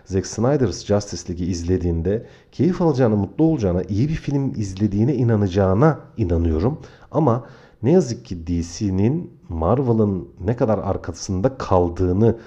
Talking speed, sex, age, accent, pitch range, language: 120 wpm, male, 40-59, native, 90-120 Hz, Turkish